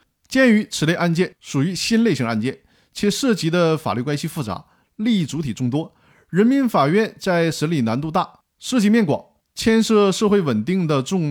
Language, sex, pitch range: Chinese, male, 135-200 Hz